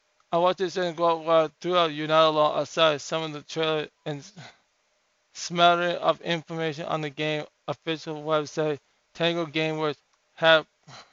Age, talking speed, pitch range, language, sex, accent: 20-39, 150 wpm, 155-175 Hz, English, male, American